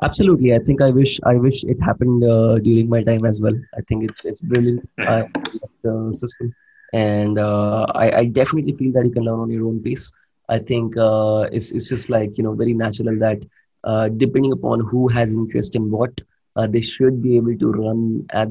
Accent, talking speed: Indian, 210 wpm